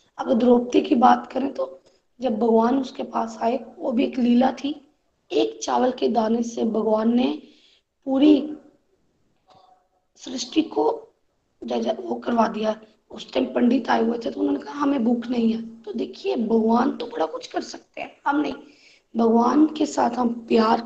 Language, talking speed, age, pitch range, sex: Hindi, 175 wpm, 20-39, 230-290 Hz, female